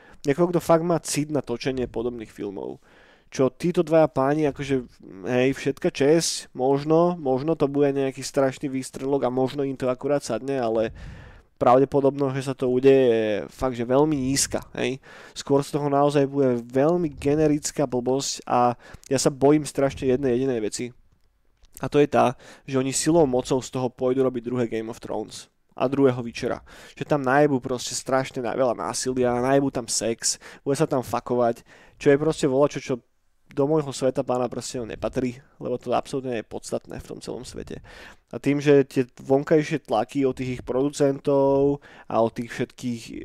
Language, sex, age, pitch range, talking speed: Slovak, male, 20-39, 125-145 Hz, 170 wpm